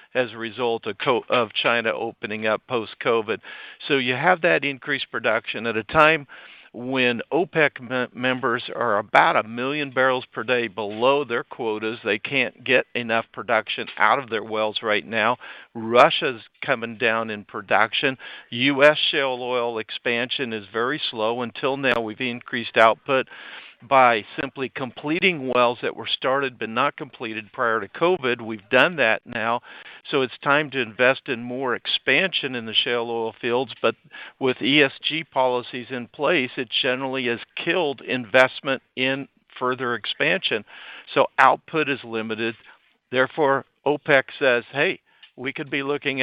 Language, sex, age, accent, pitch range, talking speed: English, male, 50-69, American, 115-135 Hz, 150 wpm